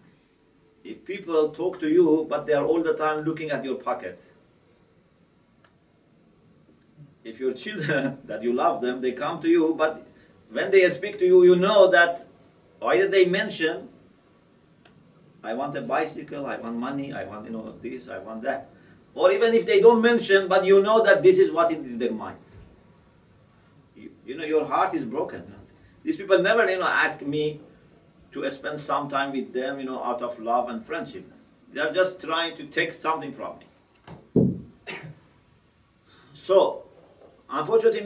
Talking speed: 170 wpm